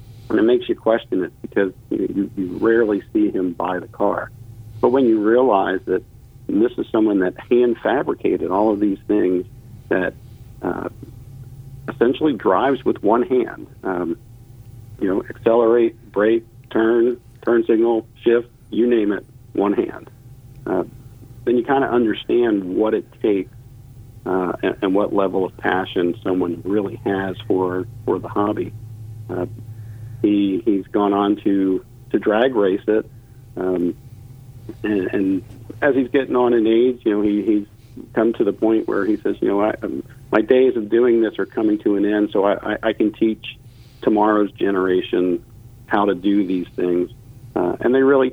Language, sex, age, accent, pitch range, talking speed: English, male, 50-69, American, 100-120 Hz, 170 wpm